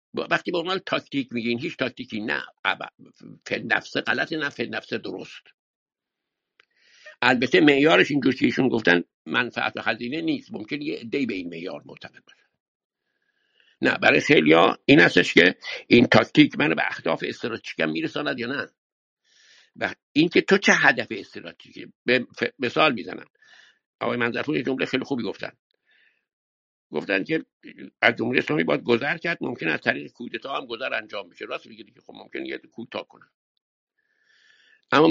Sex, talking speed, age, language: male, 150 wpm, 60-79, Persian